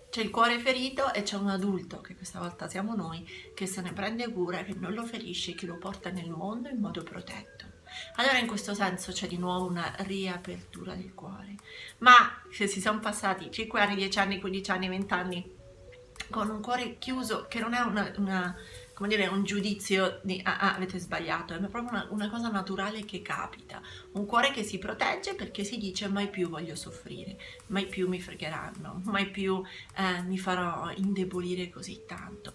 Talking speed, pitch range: 190 wpm, 185-220 Hz